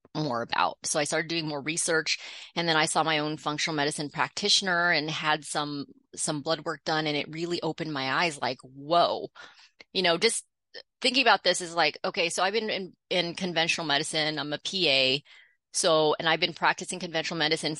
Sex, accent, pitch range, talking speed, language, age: female, American, 155-180 Hz, 195 wpm, English, 30-49